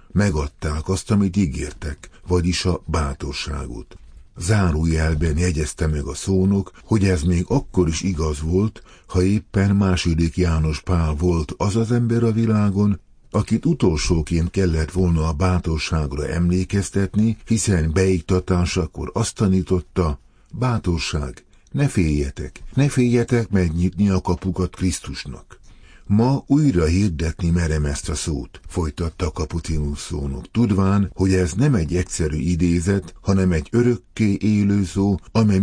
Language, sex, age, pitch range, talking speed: Hungarian, male, 50-69, 80-100 Hz, 125 wpm